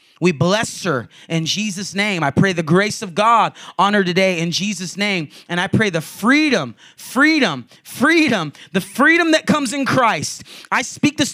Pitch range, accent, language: 185-255 Hz, American, English